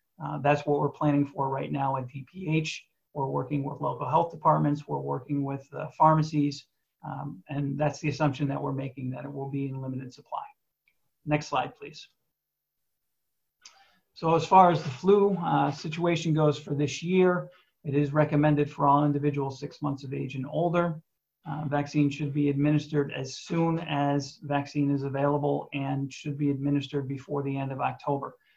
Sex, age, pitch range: male, 40-59, 140-150 Hz